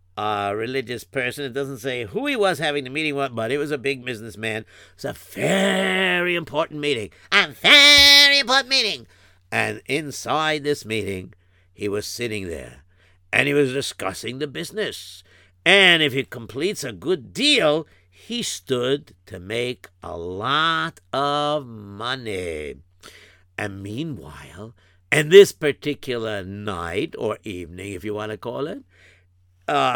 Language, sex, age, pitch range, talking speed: English, male, 60-79, 105-145 Hz, 145 wpm